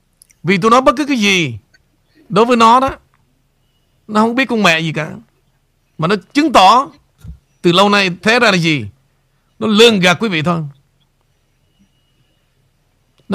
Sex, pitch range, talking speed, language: male, 135-200 Hz, 160 wpm, Vietnamese